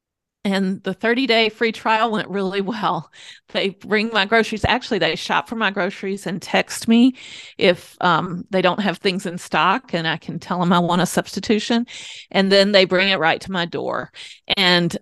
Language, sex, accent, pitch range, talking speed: English, female, American, 180-220 Hz, 190 wpm